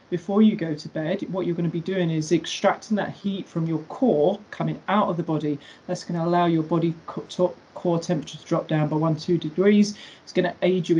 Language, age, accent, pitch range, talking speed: English, 40-59, British, 160-200 Hz, 235 wpm